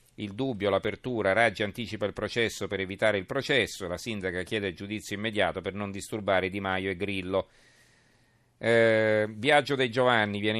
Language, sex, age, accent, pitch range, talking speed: Italian, male, 40-59, native, 100-120 Hz, 160 wpm